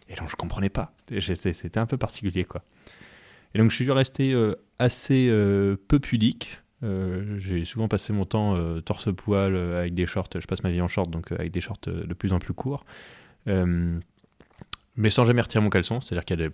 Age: 20-39